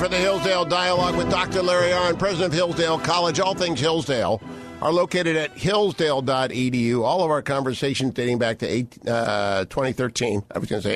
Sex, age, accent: male, 50-69, American